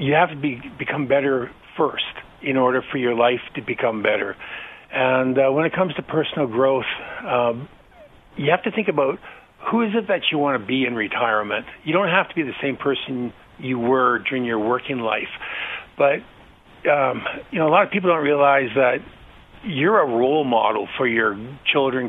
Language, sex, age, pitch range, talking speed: English, male, 50-69, 120-145 Hz, 195 wpm